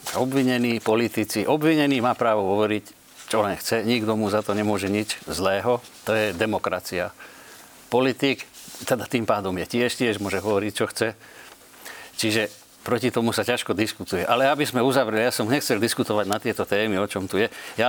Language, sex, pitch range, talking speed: Slovak, male, 105-125 Hz, 175 wpm